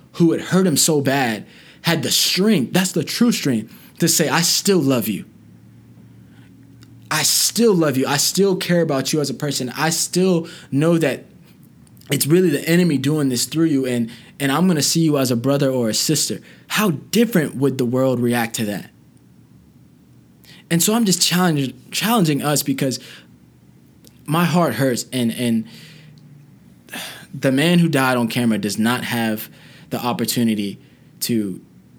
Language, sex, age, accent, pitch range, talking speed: English, male, 20-39, American, 120-165 Hz, 165 wpm